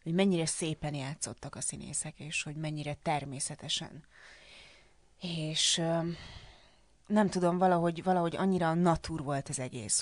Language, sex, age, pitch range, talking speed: Hungarian, female, 30-49, 145-165 Hz, 125 wpm